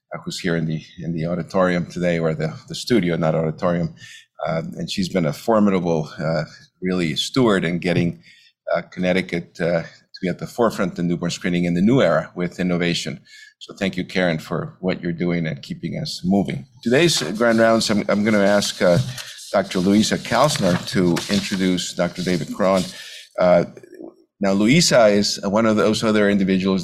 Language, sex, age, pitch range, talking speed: English, male, 50-69, 85-110 Hz, 175 wpm